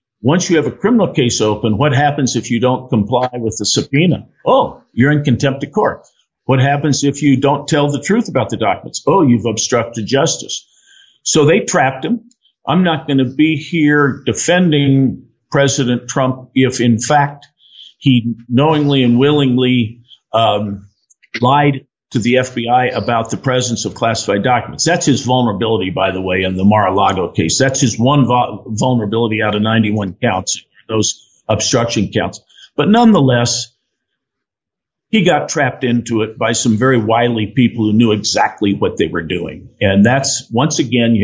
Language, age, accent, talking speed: English, 50-69, American, 165 wpm